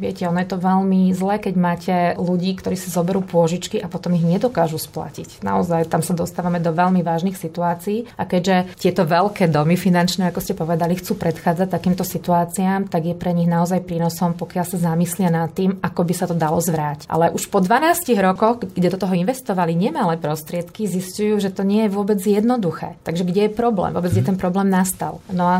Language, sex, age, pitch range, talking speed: Slovak, female, 20-39, 175-205 Hz, 200 wpm